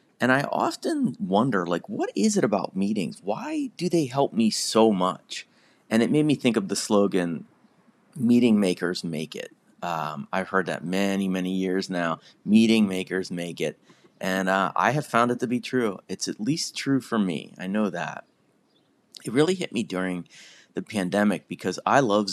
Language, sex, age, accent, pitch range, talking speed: English, male, 30-49, American, 90-130 Hz, 185 wpm